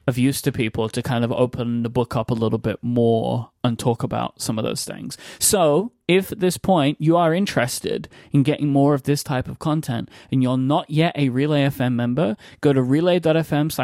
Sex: male